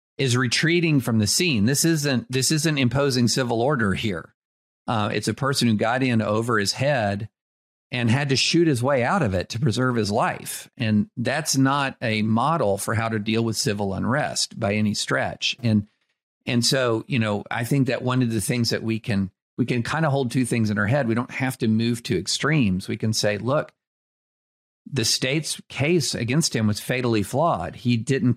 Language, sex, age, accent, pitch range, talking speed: English, male, 50-69, American, 105-130 Hz, 205 wpm